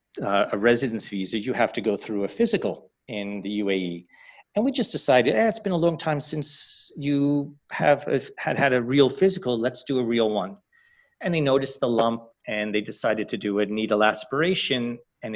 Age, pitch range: 40-59, 105-135 Hz